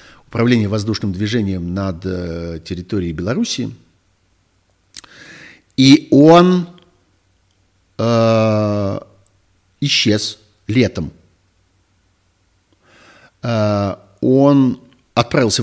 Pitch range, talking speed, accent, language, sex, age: 95-120 Hz, 55 wpm, native, Russian, male, 50-69